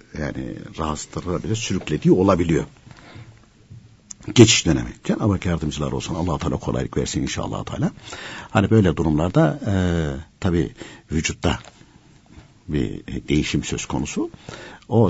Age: 60-79